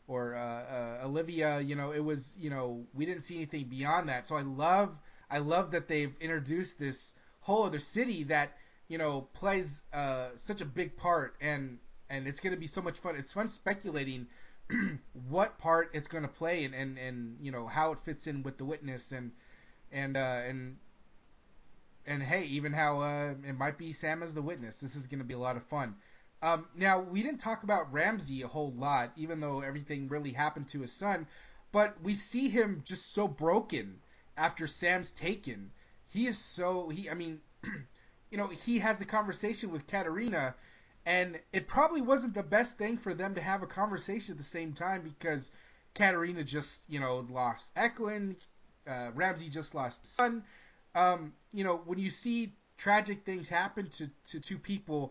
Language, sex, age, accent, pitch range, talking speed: English, male, 20-39, American, 140-190 Hz, 190 wpm